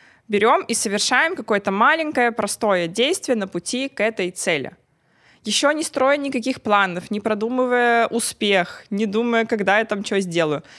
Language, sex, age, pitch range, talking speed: Russian, female, 20-39, 190-235 Hz, 150 wpm